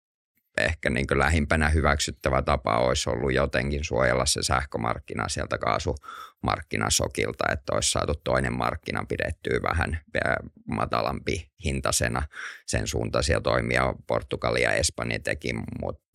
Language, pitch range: Finnish, 65-80 Hz